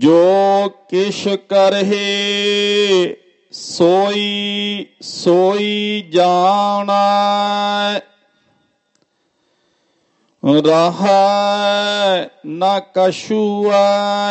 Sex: male